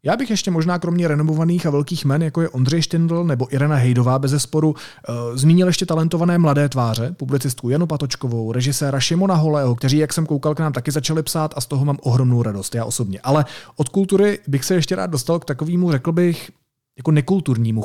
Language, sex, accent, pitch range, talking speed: Czech, male, native, 125-165 Hz, 200 wpm